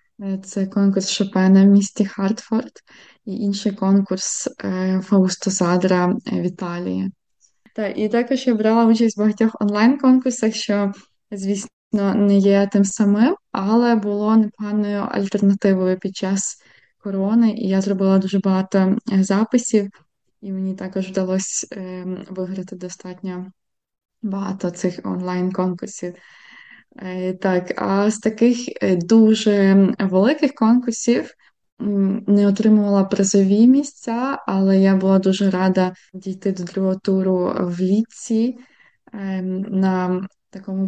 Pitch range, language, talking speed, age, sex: 190-215 Hz, Ukrainian, 105 wpm, 20-39, female